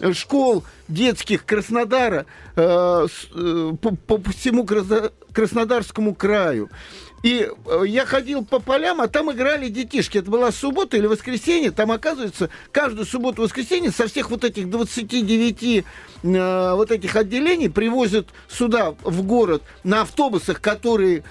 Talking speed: 125 wpm